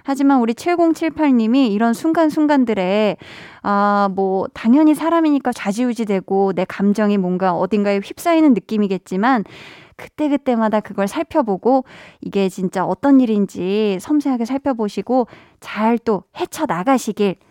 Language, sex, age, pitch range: Korean, female, 20-39, 200-285 Hz